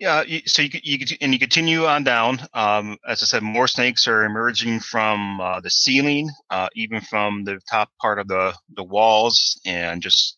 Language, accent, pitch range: English, American, 95-120 Hz